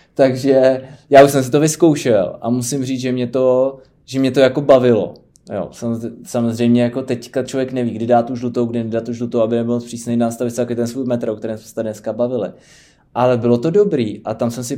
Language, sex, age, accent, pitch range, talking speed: Czech, male, 20-39, native, 115-125 Hz, 215 wpm